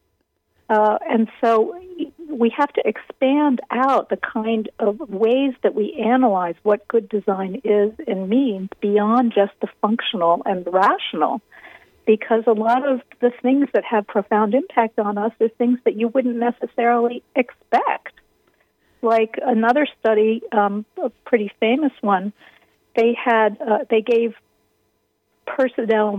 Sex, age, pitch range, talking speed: female, 50-69, 195-240 Hz, 140 wpm